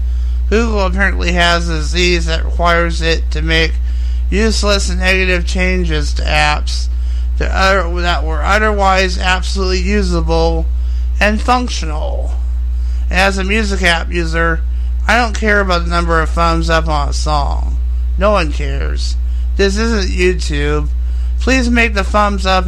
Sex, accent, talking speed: male, American, 135 wpm